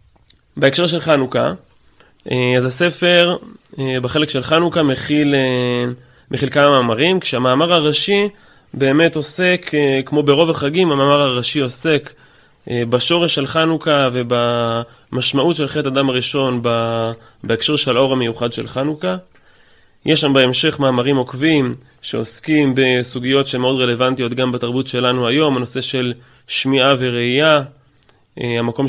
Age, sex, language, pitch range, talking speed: 20-39, male, Hebrew, 120-145 Hz, 115 wpm